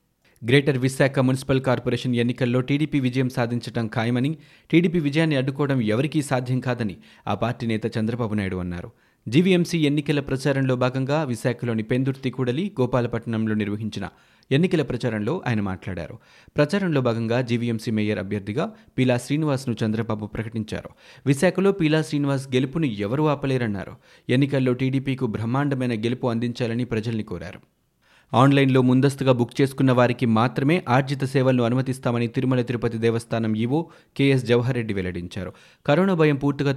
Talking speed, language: 120 wpm, Telugu